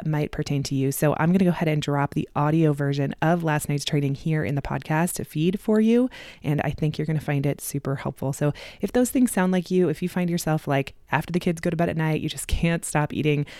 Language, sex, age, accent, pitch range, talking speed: English, female, 20-39, American, 145-180 Hz, 275 wpm